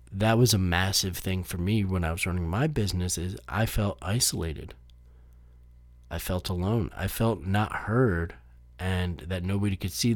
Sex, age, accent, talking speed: male, 30-49, American, 170 wpm